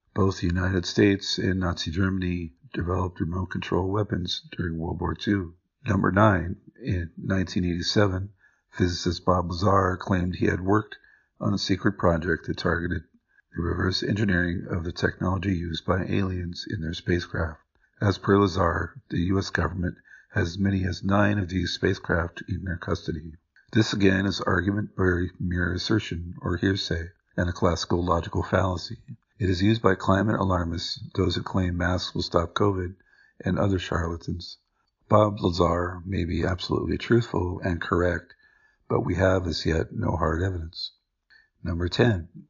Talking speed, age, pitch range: 155 wpm, 50-69, 85-95 Hz